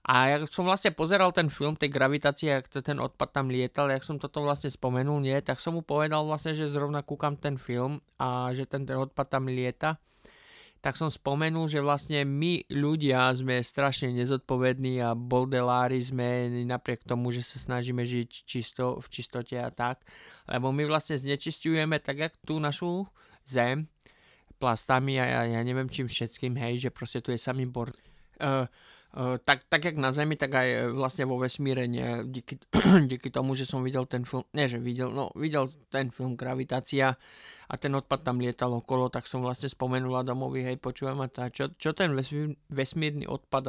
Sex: male